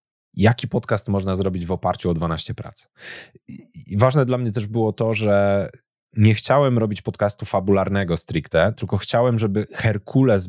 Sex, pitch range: male, 85-110 Hz